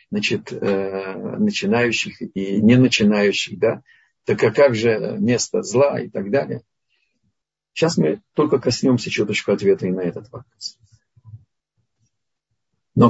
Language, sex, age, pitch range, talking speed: Russian, male, 50-69, 115-190 Hz, 120 wpm